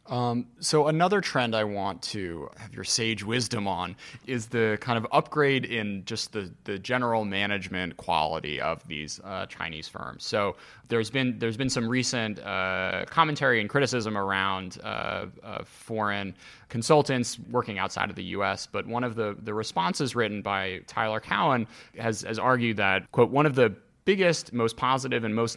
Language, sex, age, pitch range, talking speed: English, male, 20-39, 105-130 Hz, 170 wpm